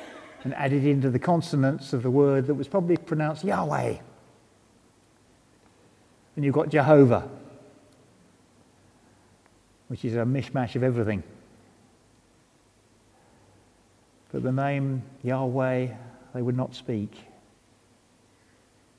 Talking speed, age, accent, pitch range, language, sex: 100 wpm, 50-69, British, 115-145 Hz, English, male